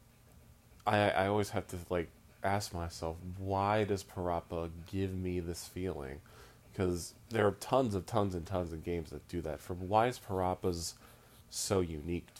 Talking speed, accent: 165 wpm, American